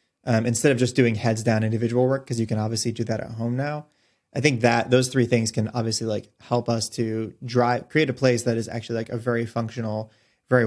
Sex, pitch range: male, 115-130 Hz